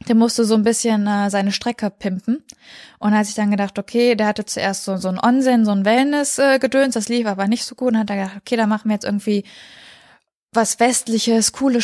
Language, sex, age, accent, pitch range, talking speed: German, female, 20-39, German, 200-235 Hz, 235 wpm